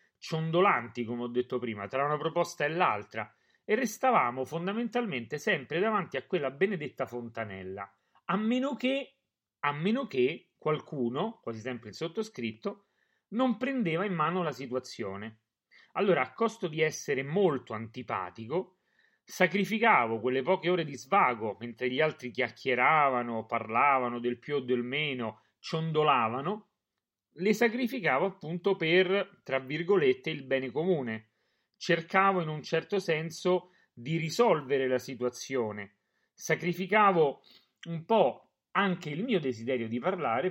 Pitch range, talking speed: 125-190 Hz, 125 wpm